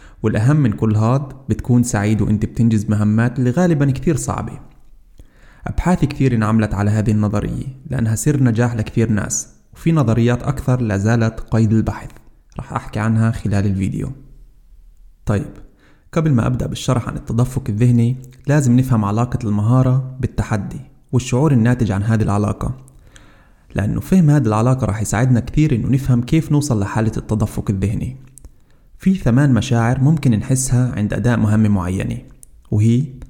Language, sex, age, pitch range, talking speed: Arabic, male, 20-39, 110-135 Hz, 145 wpm